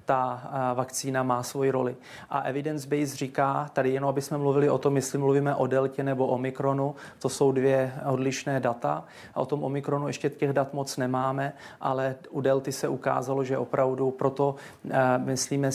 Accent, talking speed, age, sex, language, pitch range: native, 170 wpm, 30-49, male, Czech, 130-140 Hz